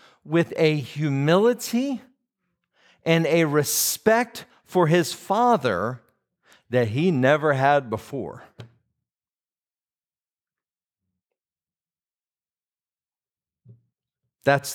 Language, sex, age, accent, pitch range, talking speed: English, male, 50-69, American, 100-140 Hz, 60 wpm